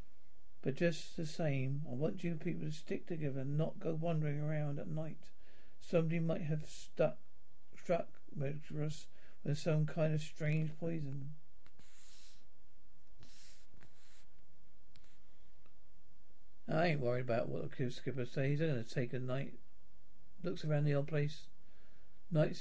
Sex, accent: male, British